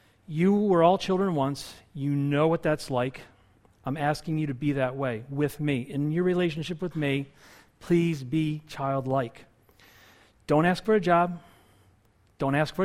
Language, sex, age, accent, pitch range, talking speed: English, male, 40-59, American, 125-170 Hz, 165 wpm